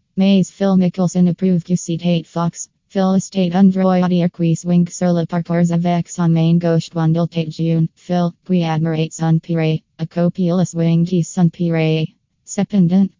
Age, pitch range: 20-39, 165-180 Hz